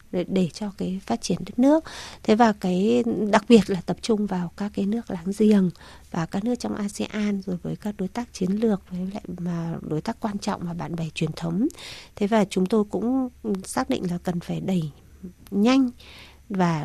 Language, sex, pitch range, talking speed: Vietnamese, female, 190-230 Hz, 205 wpm